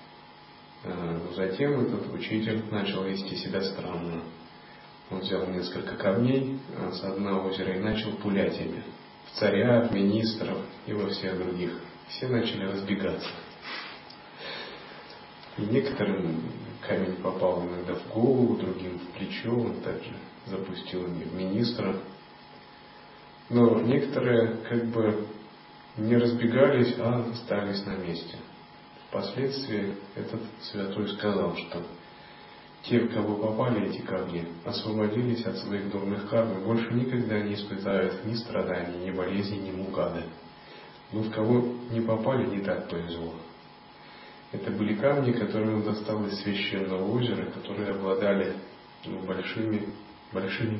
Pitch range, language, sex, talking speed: 95-115 Hz, Russian, male, 120 wpm